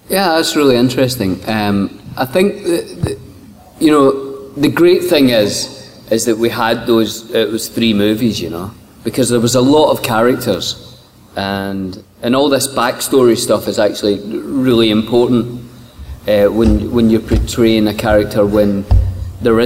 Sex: male